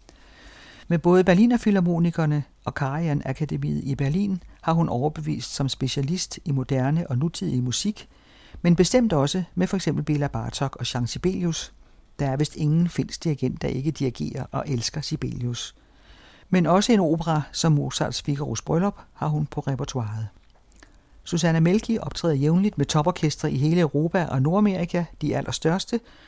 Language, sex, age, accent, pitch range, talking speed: Danish, male, 60-79, native, 135-175 Hz, 150 wpm